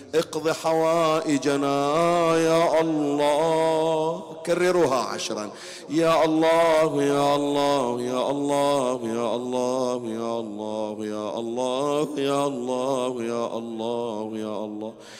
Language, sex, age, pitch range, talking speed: Arabic, male, 50-69, 120-150 Hz, 95 wpm